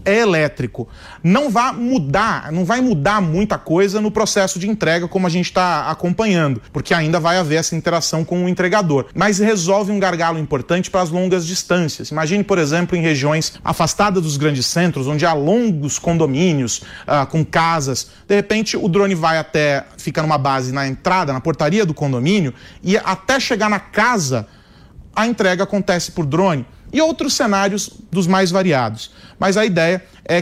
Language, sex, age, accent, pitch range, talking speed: Portuguese, male, 30-49, Brazilian, 150-200 Hz, 175 wpm